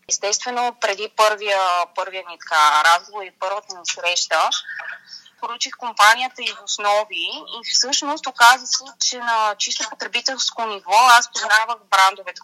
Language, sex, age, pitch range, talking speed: Bulgarian, female, 20-39, 190-235 Hz, 125 wpm